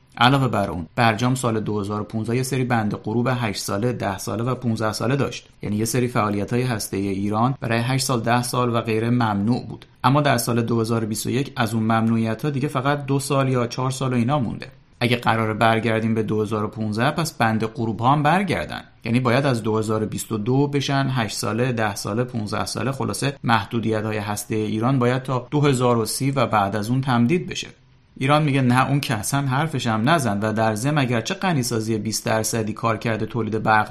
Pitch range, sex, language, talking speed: 110-135 Hz, male, Persian, 190 wpm